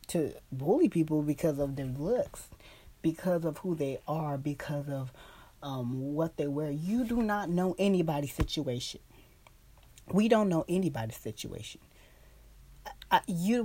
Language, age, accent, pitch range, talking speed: English, 30-49, American, 140-180 Hz, 130 wpm